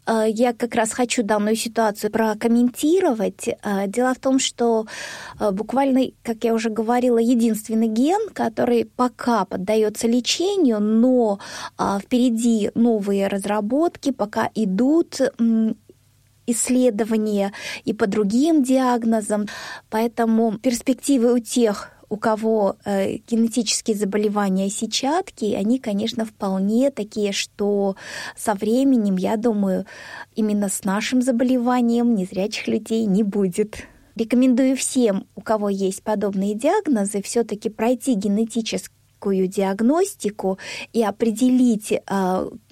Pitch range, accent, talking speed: 205-245 Hz, native, 105 wpm